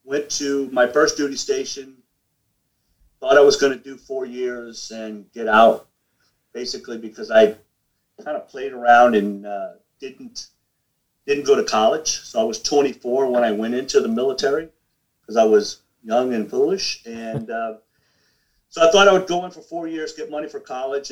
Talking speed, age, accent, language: 180 wpm, 50-69, American, English